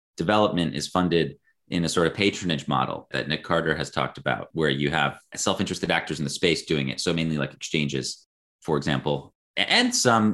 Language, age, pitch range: English, 30-49, 75-100 Hz